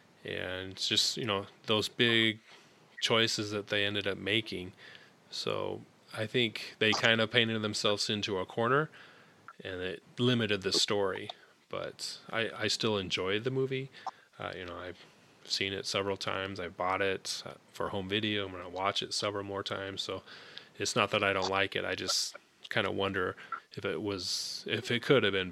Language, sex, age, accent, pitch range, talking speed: English, male, 20-39, American, 100-120 Hz, 185 wpm